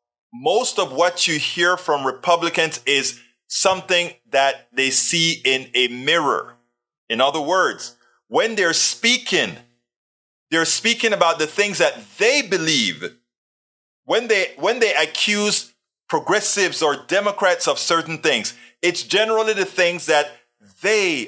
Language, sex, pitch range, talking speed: English, male, 150-205 Hz, 125 wpm